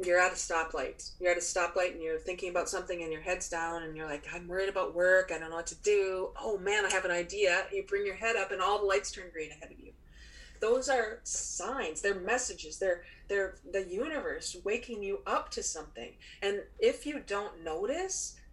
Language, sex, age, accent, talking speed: English, female, 30-49, American, 225 wpm